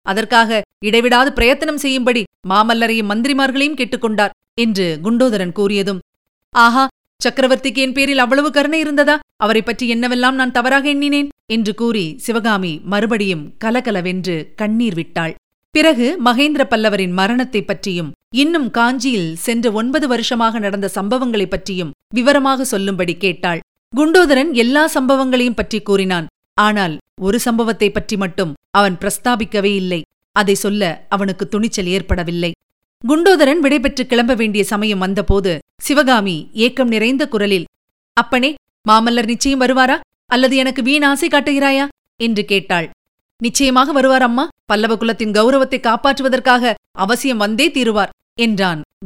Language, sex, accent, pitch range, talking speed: Tamil, female, native, 200-260 Hz, 115 wpm